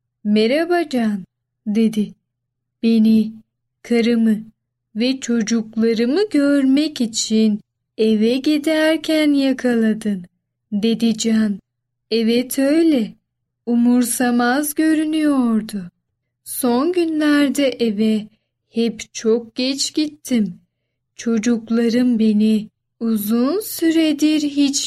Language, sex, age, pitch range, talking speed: Turkish, female, 10-29, 215-280 Hz, 70 wpm